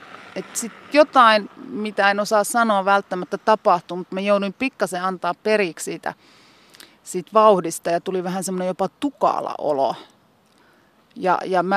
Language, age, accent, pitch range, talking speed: Finnish, 30-49, native, 175-215 Hz, 135 wpm